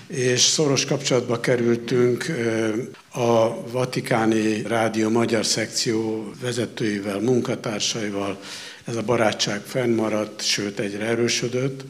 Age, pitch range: 60-79, 110-130 Hz